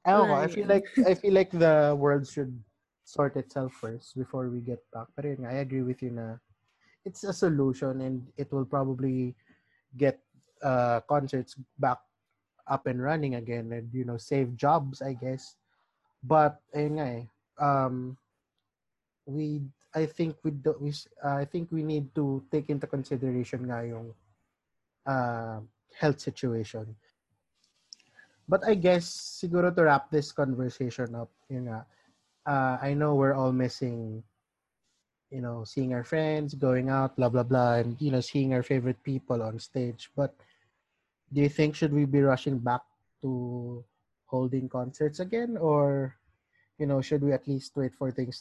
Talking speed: 160 wpm